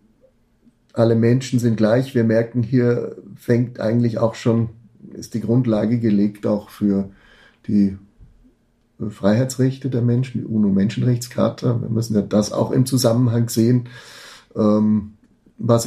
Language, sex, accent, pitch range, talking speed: German, male, German, 105-120 Hz, 120 wpm